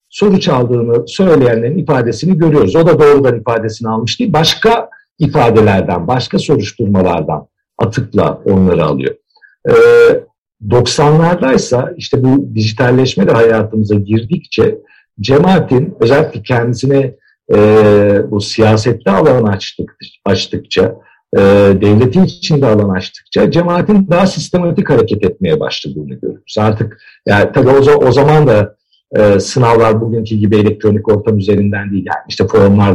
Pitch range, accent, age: 110-175 Hz, native, 50-69